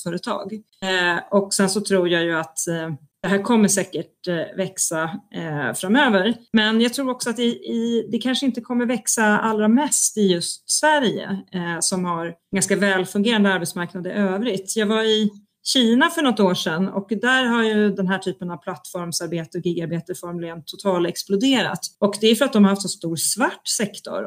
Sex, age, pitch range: female, 30-49, 175-215 Hz